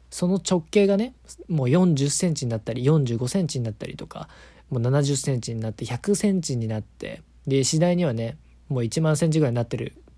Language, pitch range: Japanese, 110-165 Hz